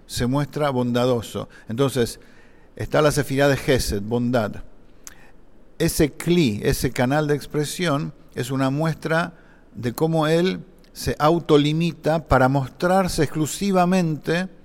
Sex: male